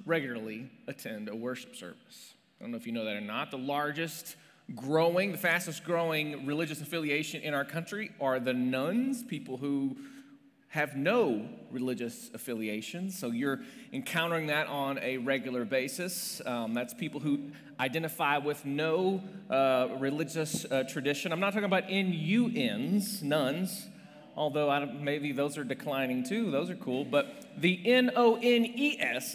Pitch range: 140-200 Hz